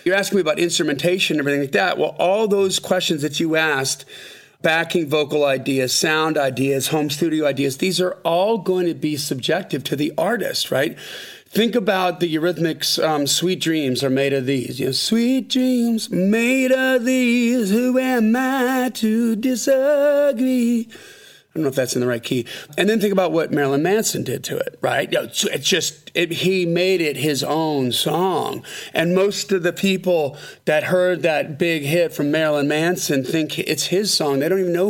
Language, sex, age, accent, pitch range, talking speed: English, male, 40-59, American, 145-195 Hz, 185 wpm